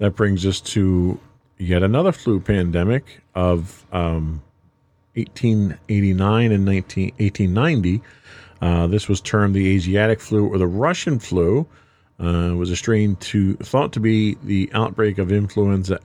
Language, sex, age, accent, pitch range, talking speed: English, male, 40-59, American, 90-115 Hz, 140 wpm